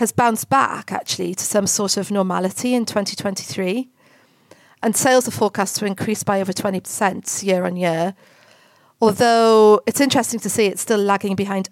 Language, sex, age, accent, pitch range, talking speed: English, female, 40-59, British, 185-225 Hz, 165 wpm